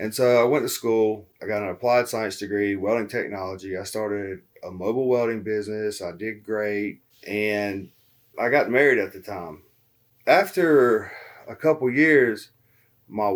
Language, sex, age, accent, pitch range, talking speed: English, male, 30-49, American, 100-125 Hz, 155 wpm